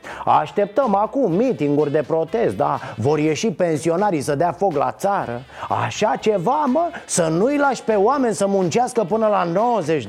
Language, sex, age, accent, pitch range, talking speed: Romanian, male, 30-49, native, 165-250 Hz, 160 wpm